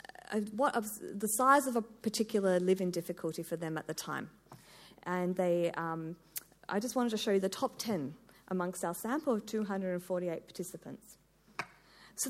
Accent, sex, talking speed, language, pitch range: Australian, female, 165 wpm, English, 175-225 Hz